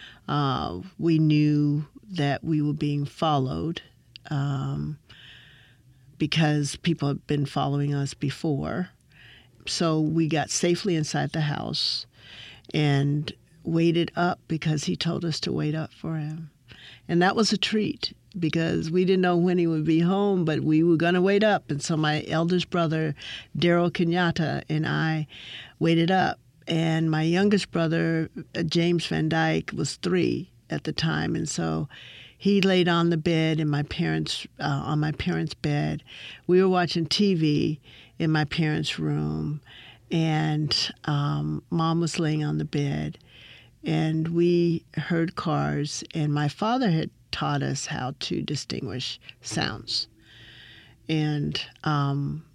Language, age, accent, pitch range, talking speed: English, 50-69, American, 130-165 Hz, 145 wpm